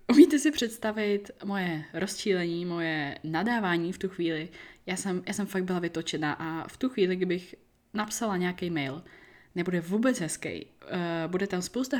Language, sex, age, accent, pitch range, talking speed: Czech, female, 20-39, native, 170-230 Hz, 155 wpm